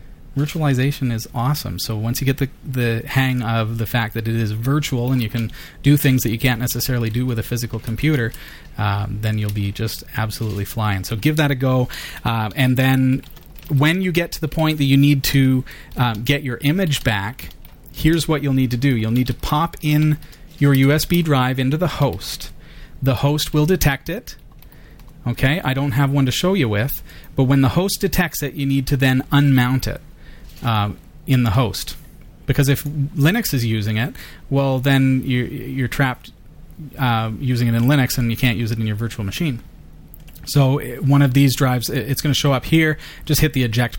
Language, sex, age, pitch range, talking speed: English, male, 30-49, 115-145 Hz, 200 wpm